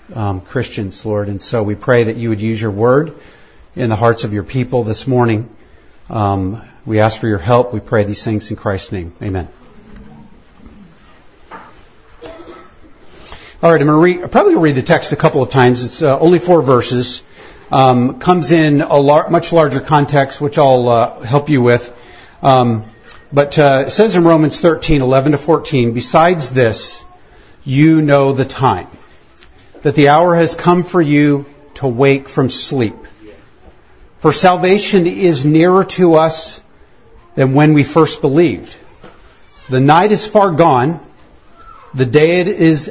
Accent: American